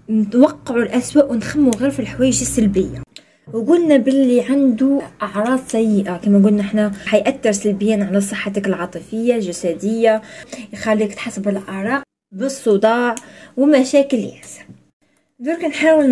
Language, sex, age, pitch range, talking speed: Arabic, female, 20-39, 215-295 Hz, 105 wpm